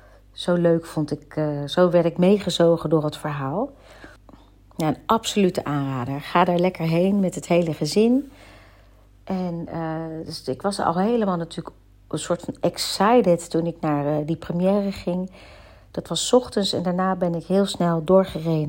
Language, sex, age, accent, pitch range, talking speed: Dutch, female, 40-59, Dutch, 150-190 Hz, 170 wpm